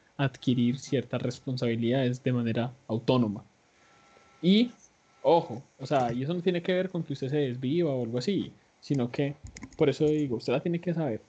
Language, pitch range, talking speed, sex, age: Spanish, 130-160 Hz, 180 wpm, male, 20-39